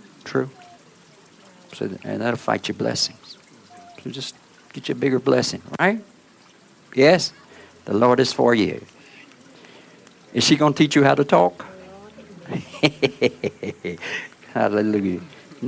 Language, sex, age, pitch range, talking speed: English, male, 60-79, 125-175 Hz, 115 wpm